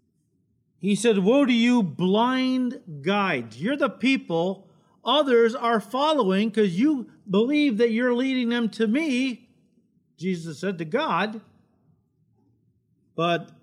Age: 50-69